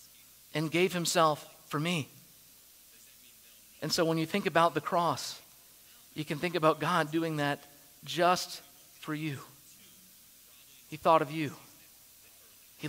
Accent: American